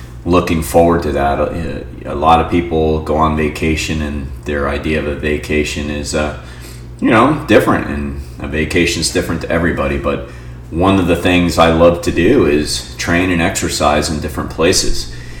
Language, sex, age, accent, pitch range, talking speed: English, male, 30-49, American, 65-80 Hz, 175 wpm